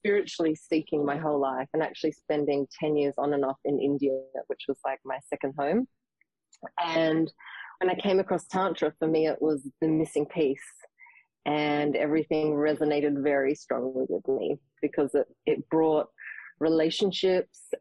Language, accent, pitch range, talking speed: English, Australian, 150-180 Hz, 155 wpm